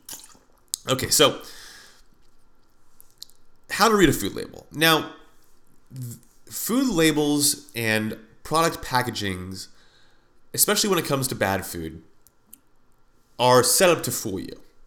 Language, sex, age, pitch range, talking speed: English, male, 30-49, 110-150 Hz, 110 wpm